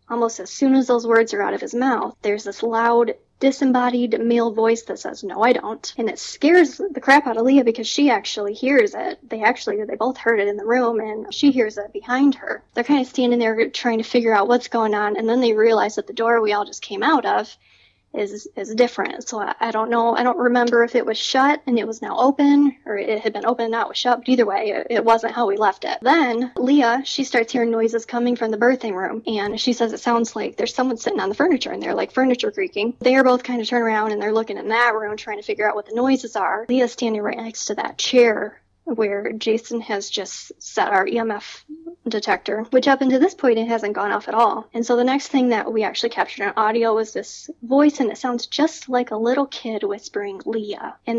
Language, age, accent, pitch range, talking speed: English, 10-29, American, 220-255 Hz, 250 wpm